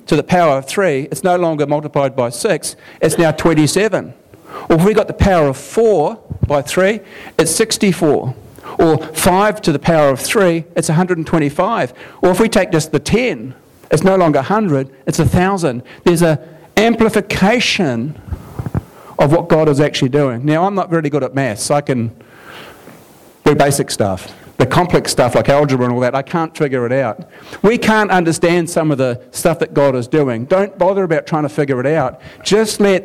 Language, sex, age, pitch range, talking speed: English, male, 50-69, 140-185 Hz, 200 wpm